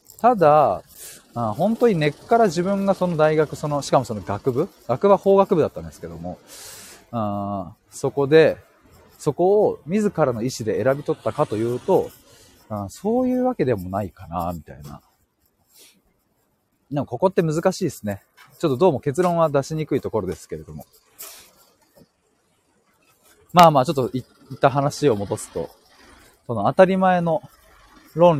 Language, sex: Japanese, male